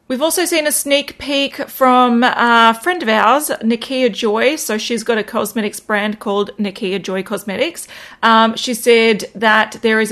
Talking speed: 170 wpm